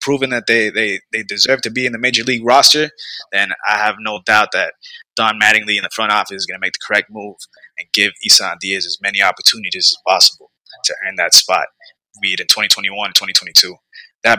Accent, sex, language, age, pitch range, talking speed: American, male, English, 20-39, 115-150 Hz, 215 wpm